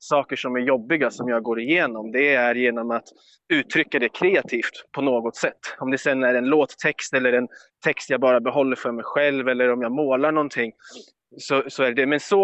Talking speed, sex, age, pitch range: 195 wpm, male, 20-39, 120-140 Hz